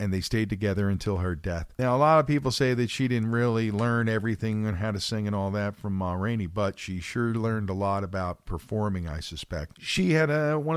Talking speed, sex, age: 235 wpm, male, 50-69